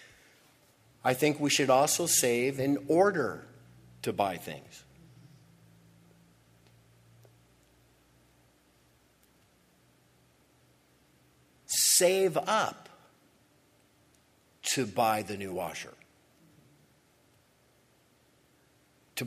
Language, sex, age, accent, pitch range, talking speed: English, male, 50-69, American, 115-175 Hz, 60 wpm